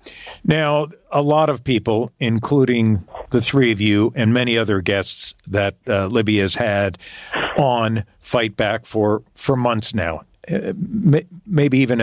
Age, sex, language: 50-69, male, English